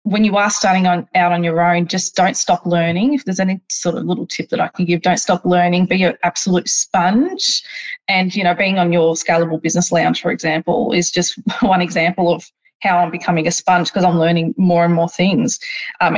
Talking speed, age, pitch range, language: 225 wpm, 20-39, 170-195 Hz, English